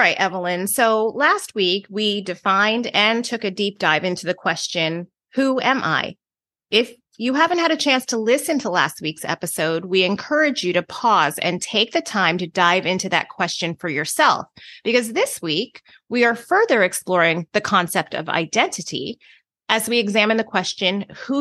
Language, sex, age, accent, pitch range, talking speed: English, female, 30-49, American, 180-255 Hz, 175 wpm